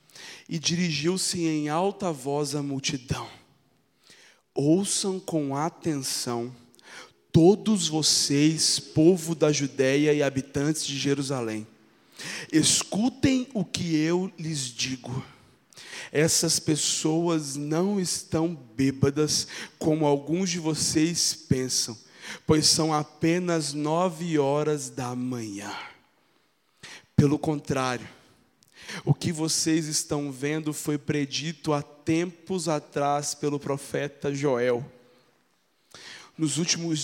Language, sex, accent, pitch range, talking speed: Portuguese, male, Brazilian, 145-190 Hz, 95 wpm